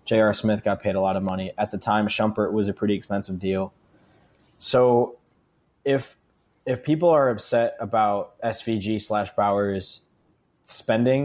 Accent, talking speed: American, 150 wpm